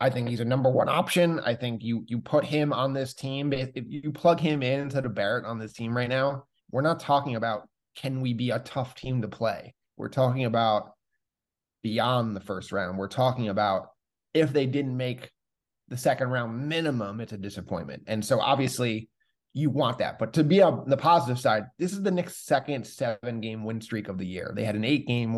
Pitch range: 115-145 Hz